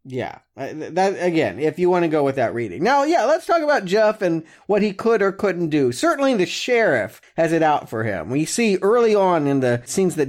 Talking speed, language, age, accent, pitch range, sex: 235 wpm, English, 40-59, American, 140-200 Hz, male